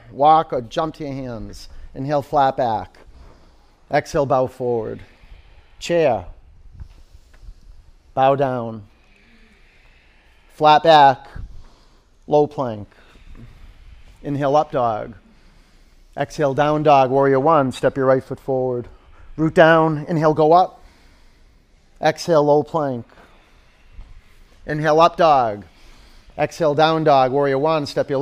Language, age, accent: English, 40-59, American